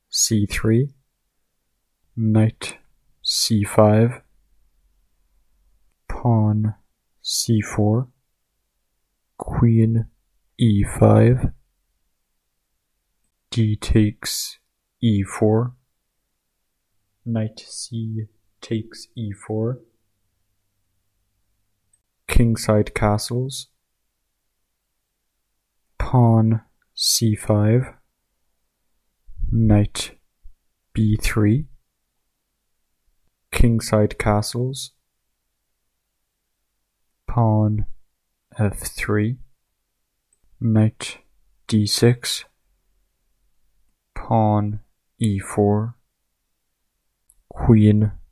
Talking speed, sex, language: 35 wpm, male, English